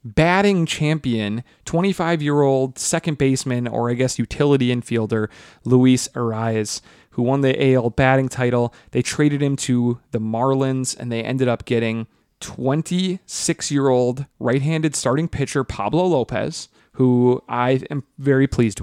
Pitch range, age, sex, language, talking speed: 120-145 Hz, 30-49, male, English, 125 wpm